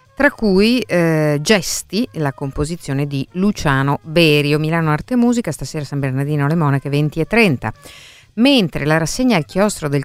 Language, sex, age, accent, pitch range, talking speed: Italian, female, 50-69, native, 130-170 Hz, 160 wpm